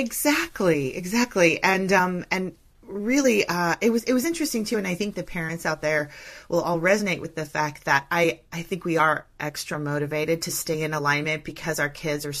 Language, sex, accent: English, female, American